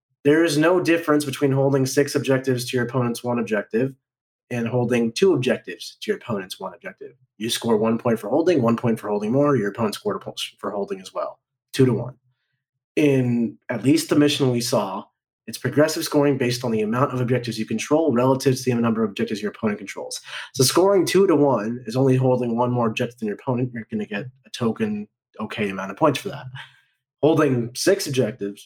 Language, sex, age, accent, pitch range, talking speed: English, male, 30-49, American, 115-145 Hz, 210 wpm